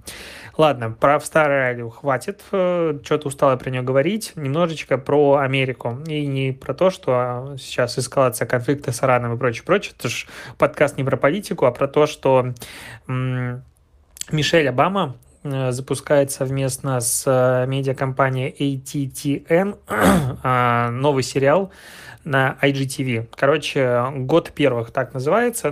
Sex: male